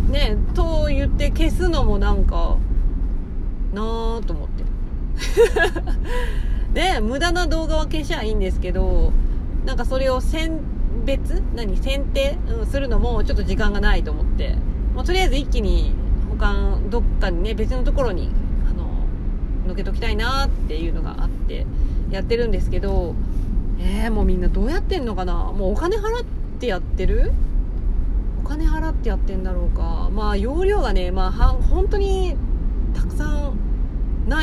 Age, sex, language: 40-59, female, Japanese